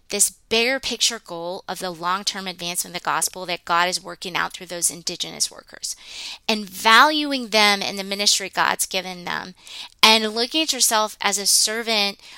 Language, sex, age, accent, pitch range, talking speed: English, female, 30-49, American, 180-215 Hz, 175 wpm